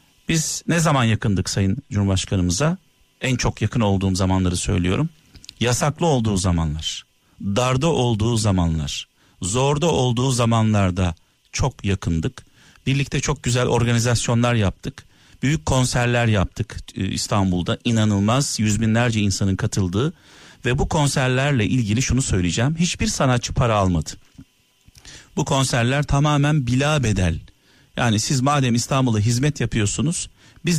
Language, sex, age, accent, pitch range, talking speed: Turkish, male, 50-69, native, 105-140 Hz, 115 wpm